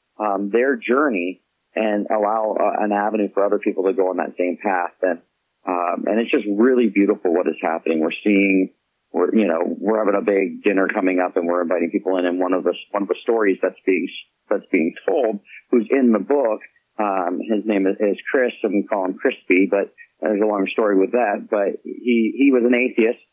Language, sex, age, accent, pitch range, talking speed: English, male, 40-59, American, 95-105 Hz, 215 wpm